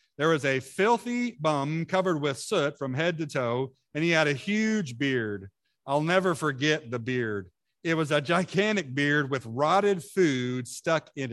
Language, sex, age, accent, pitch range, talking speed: English, male, 50-69, American, 135-200 Hz, 175 wpm